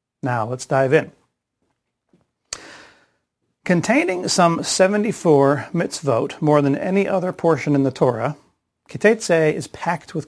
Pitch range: 130-165 Hz